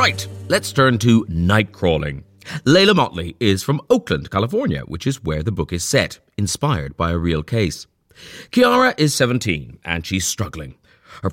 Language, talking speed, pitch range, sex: English, 165 wpm, 85-135 Hz, male